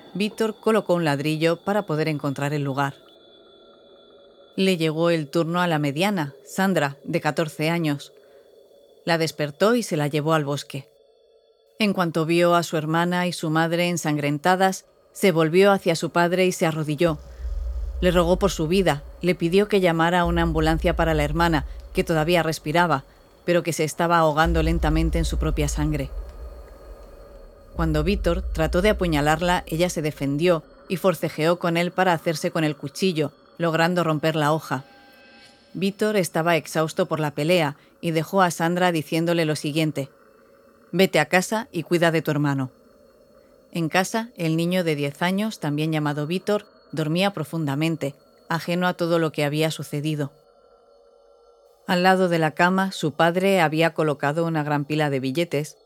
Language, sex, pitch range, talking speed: Spanish, female, 155-185 Hz, 160 wpm